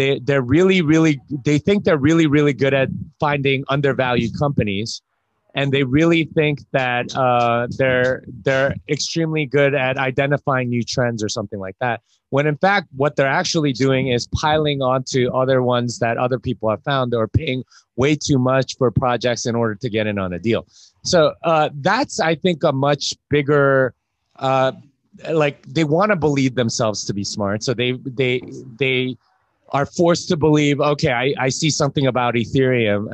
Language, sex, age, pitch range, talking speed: English, male, 30-49, 125-155 Hz, 175 wpm